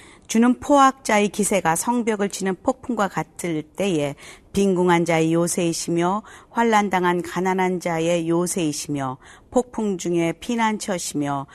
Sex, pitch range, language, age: female, 160-205 Hz, Korean, 40-59